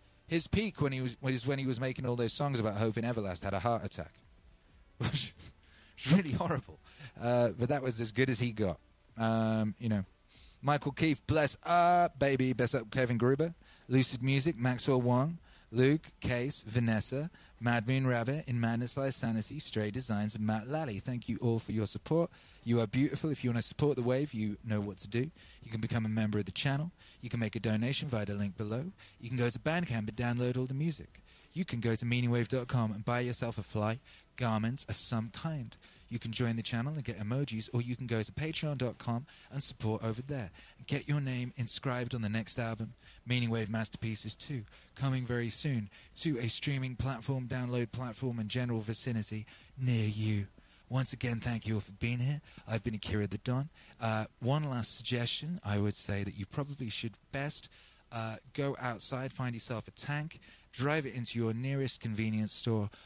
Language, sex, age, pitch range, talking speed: English, male, 30-49, 110-135 Hz, 200 wpm